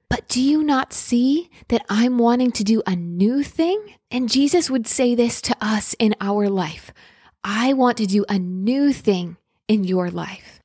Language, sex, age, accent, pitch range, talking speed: English, female, 20-39, American, 195-245 Hz, 185 wpm